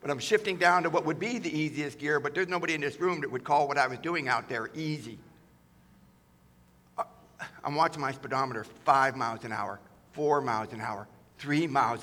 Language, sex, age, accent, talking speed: English, male, 60-79, American, 205 wpm